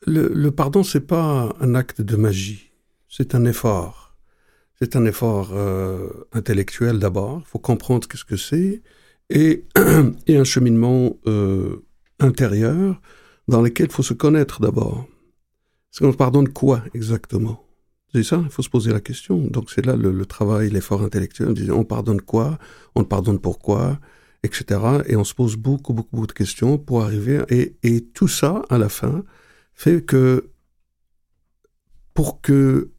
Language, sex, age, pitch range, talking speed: French, male, 60-79, 105-135 Hz, 160 wpm